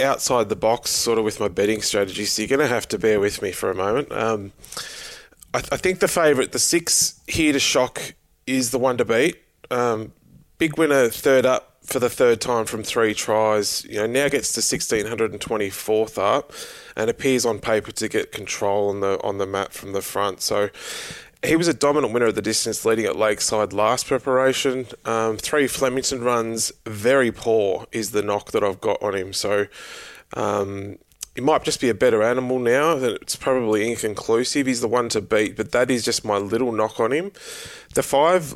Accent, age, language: Australian, 20-39, English